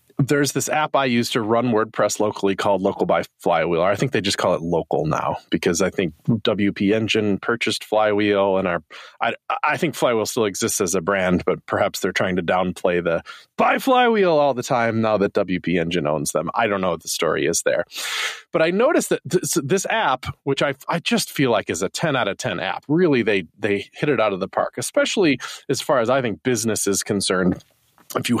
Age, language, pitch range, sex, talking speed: 30-49, English, 105-170 Hz, male, 225 wpm